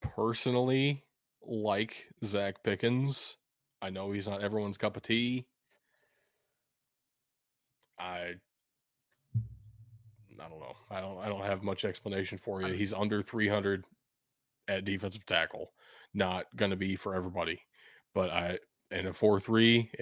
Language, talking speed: English, 125 wpm